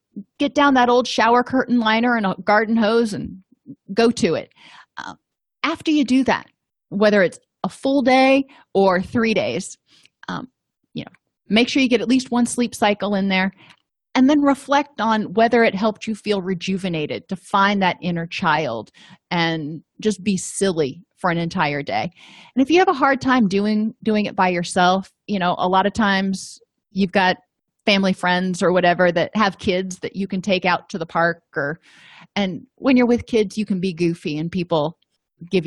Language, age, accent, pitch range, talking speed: English, 30-49, American, 180-240 Hz, 195 wpm